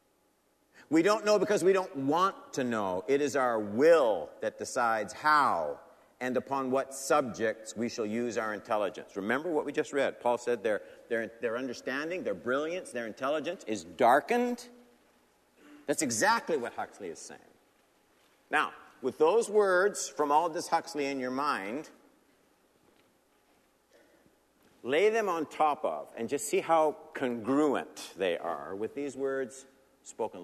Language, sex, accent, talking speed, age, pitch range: English, male, American, 150 wpm, 50-69, 115-150 Hz